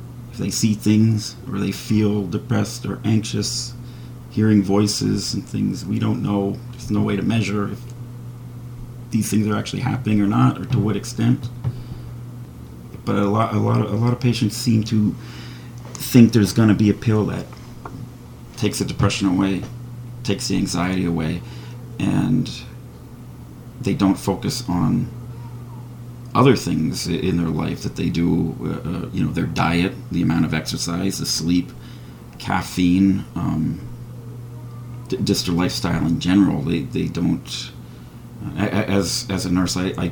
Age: 30-49